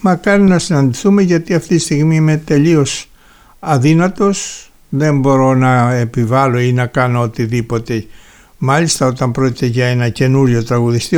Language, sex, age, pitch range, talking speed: Greek, male, 60-79, 125-165 Hz, 135 wpm